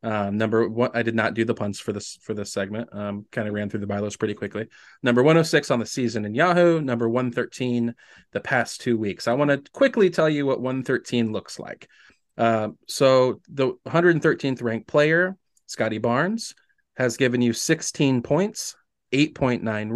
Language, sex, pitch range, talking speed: English, male, 115-150 Hz, 180 wpm